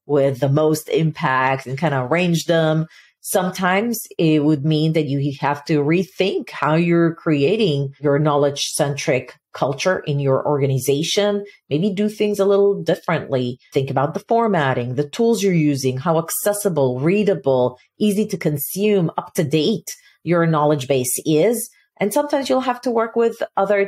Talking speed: 150 wpm